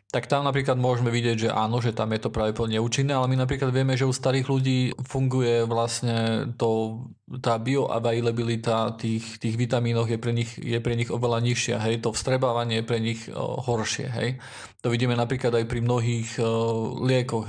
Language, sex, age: Slovak, male, 20-39